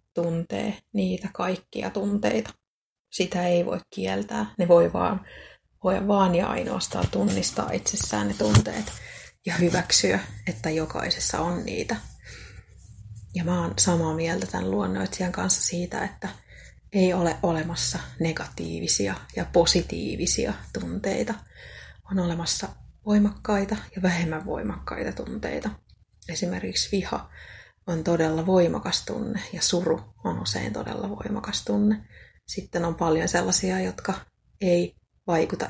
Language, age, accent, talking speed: Finnish, 30-49, native, 115 wpm